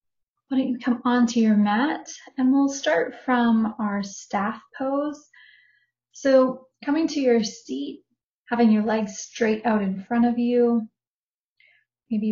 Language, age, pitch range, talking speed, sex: English, 30-49, 210-255 Hz, 140 wpm, female